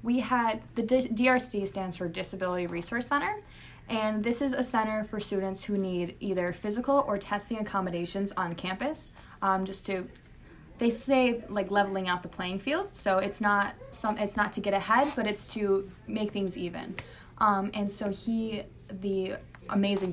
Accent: American